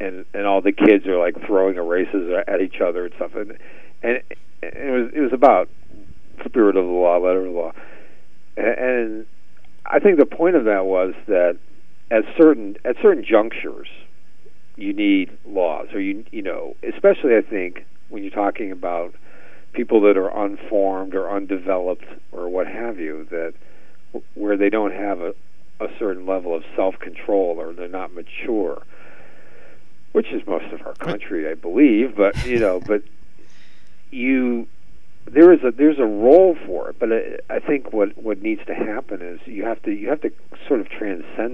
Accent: American